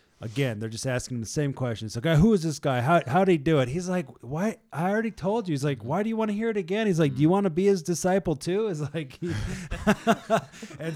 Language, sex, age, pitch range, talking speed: English, male, 30-49, 110-160 Hz, 275 wpm